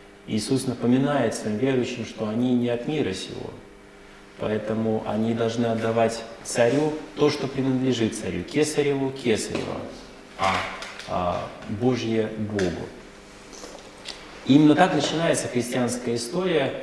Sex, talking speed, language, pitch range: male, 105 wpm, Russian, 105-135 Hz